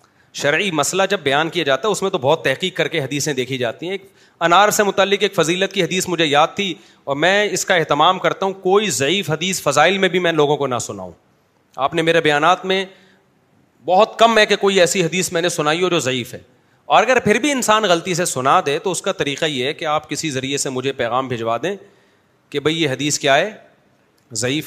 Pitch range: 145-185 Hz